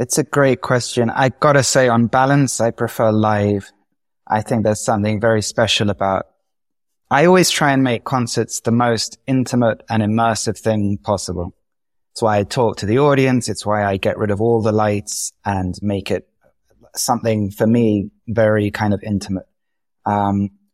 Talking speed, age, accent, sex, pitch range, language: 175 wpm, 20-39, British, male, 105-125 Hz, English